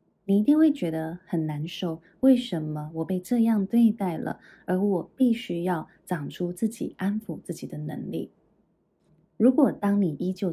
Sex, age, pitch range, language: female, 20-39, 170-230 Hz, Chinese